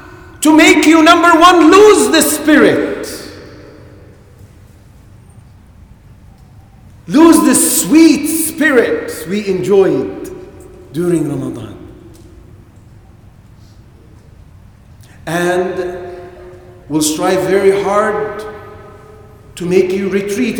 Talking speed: 75 wpm